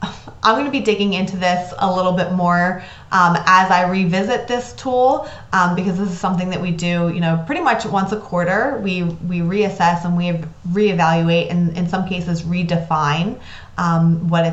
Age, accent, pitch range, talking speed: 20-39, American, 170-205 Hz, 185 wpm